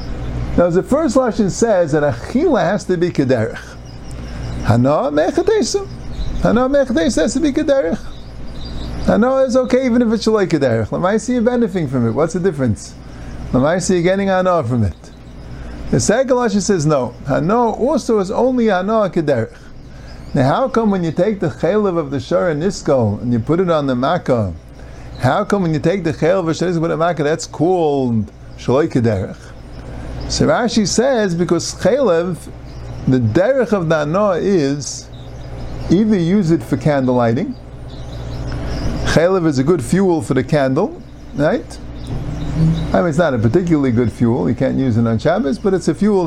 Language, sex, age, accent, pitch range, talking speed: English, male, 50-69, American, 120-200 Hz, 180 wpm